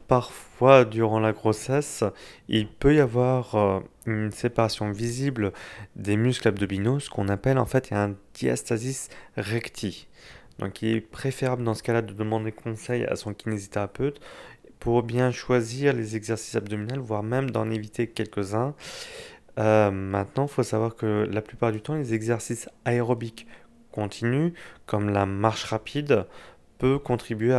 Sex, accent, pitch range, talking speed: male, French, 105-125 Hz, 145 wpm